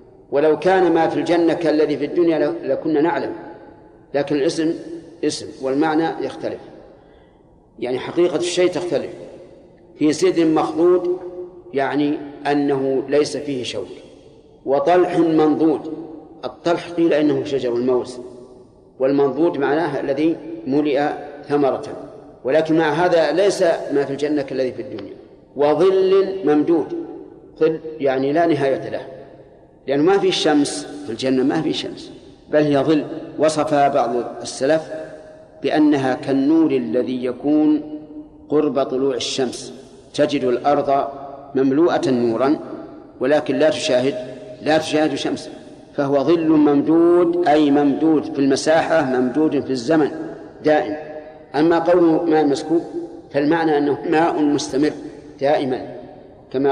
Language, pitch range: Arabic, 140-165 Hz